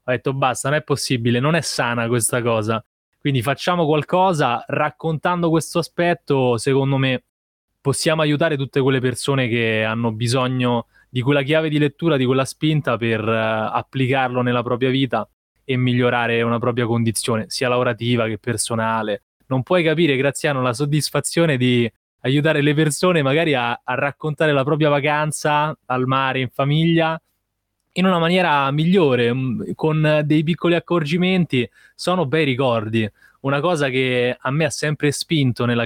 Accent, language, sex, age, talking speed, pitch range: native, Italian, male, 20-39, 150 wpm, 125-155 Hz